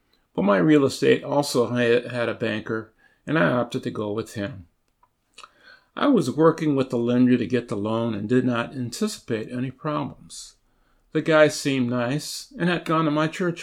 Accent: American